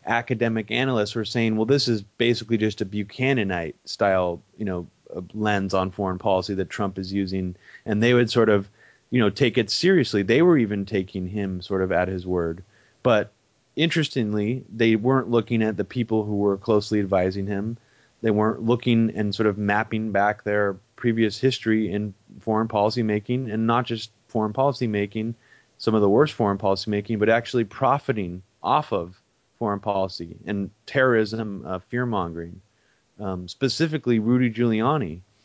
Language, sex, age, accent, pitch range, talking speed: English, male, 30-49, American, 100-120 Hz, 165 wpm